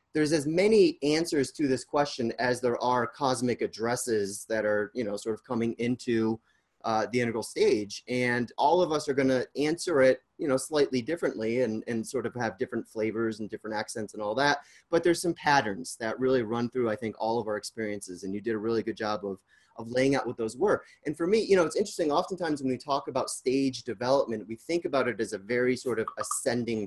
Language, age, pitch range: English, 30-49, 110-145 Hz